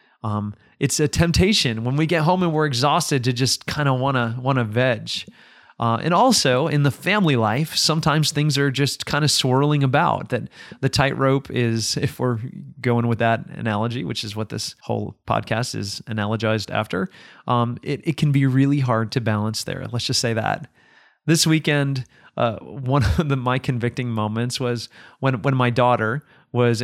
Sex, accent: male, American